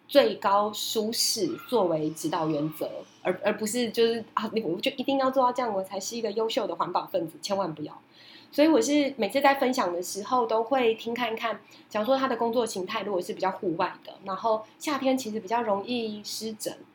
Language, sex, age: Chinese, female, 20-39